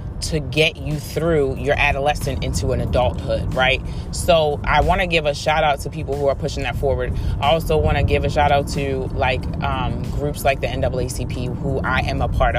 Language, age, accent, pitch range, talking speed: English, 30-49, American, 115-150 Hz, 215 wpm